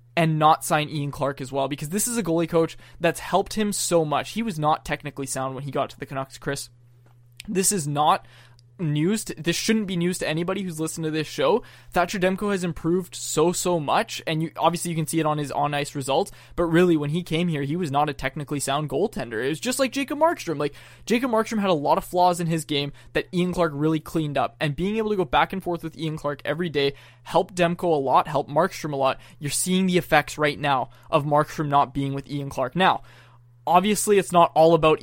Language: English